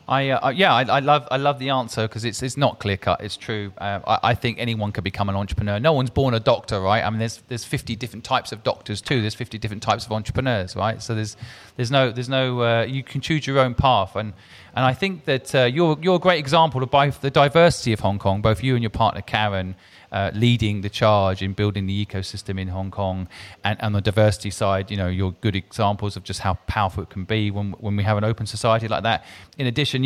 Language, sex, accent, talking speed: English, male, British, 250 wpm